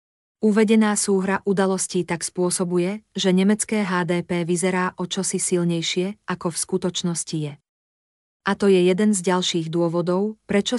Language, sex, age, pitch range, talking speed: Slovak, female, 40-59, 175-195 Hz, 135 wpm